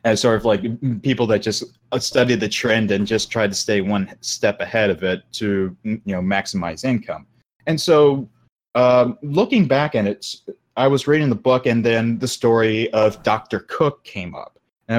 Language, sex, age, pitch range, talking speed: English, male, 20-39, 105-130 Hz, 190 wpm